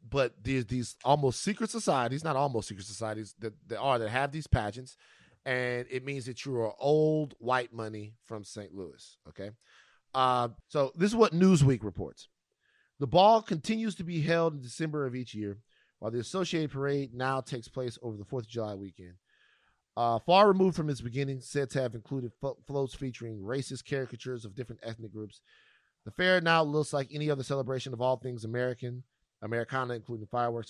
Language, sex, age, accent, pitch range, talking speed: English, male, 30-49, American, 105-145 Hz, 185 wpm